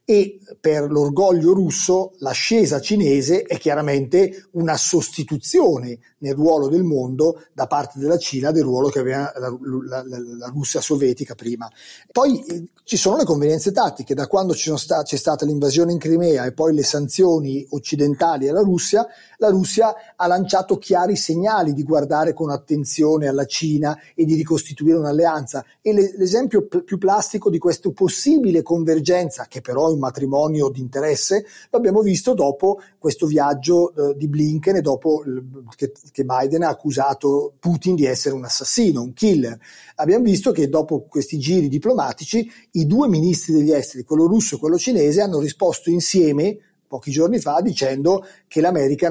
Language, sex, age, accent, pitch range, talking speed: Italian, male, 30-49, native, 140-180 Hz, 150 wpm